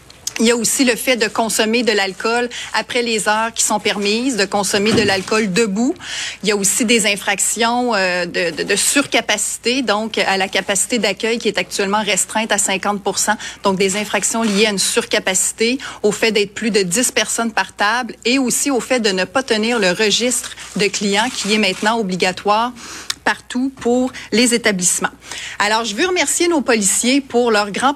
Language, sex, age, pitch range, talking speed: French, female, 30-49, 200-240 Hz, 190 wpm